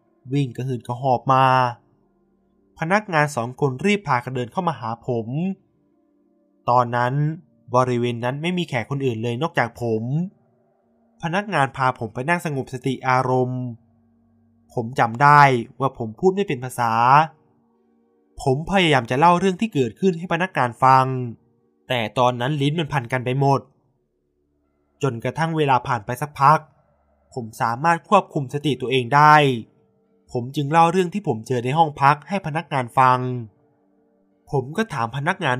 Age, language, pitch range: 20-39, Thai, 120-155 Hz